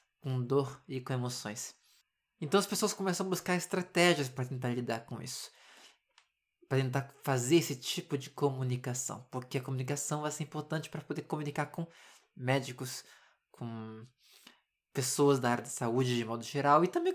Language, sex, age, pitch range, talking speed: Portuguese, male, 20-39, 130-165 Hz, 160 wpm